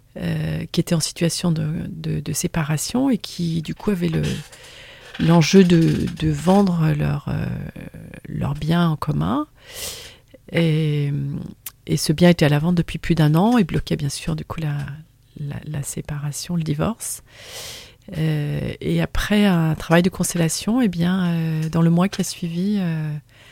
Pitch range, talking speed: 155-190 Hz, 170 wpm